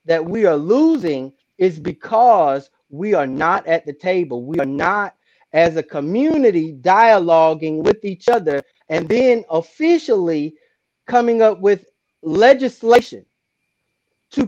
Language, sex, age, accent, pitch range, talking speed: English, male, 30-49, American, 165-230 Hz, 125 wpm